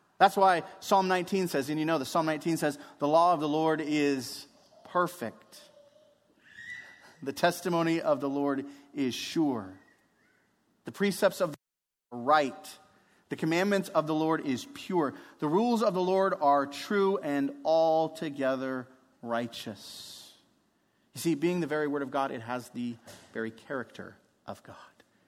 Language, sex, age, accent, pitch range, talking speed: English, male, 30-49, American, 140-230 Hz, 155 wpm